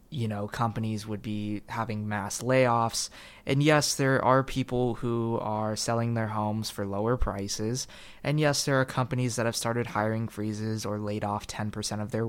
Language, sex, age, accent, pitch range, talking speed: English, male, 20-39, American, 105-125 Hz, 180 wpm